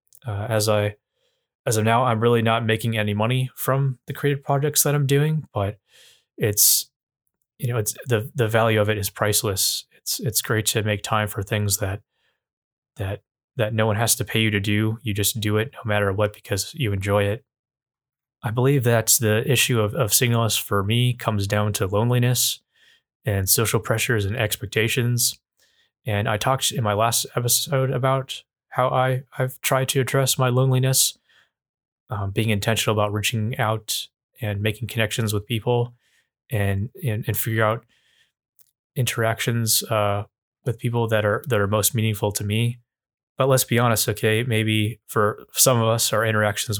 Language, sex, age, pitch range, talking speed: English, male, 20-39, 105-125 Hz, 175 wpm